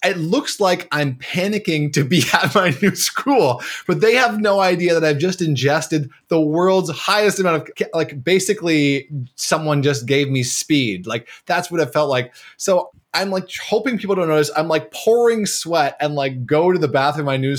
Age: 20-39